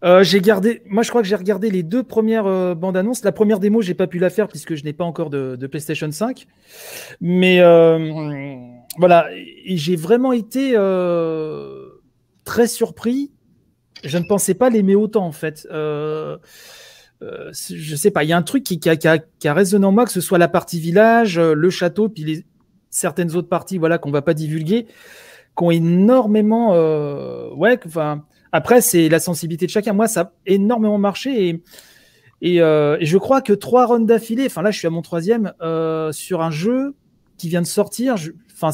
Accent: French